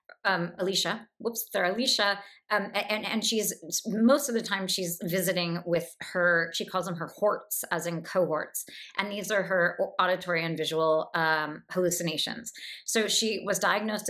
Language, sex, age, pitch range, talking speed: English, female, 30-49, 170-215 Hz, 160 wpm